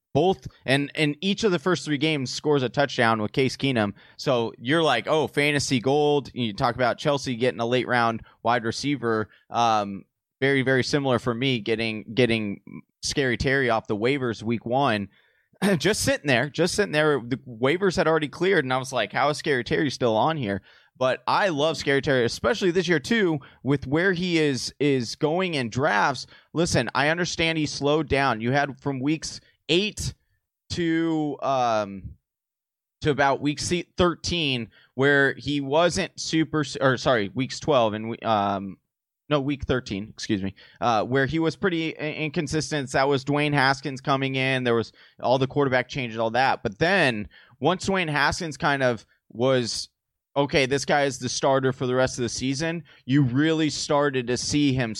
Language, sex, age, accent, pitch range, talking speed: English, male, 20-39, American, 120-150 Hz, 180 wpm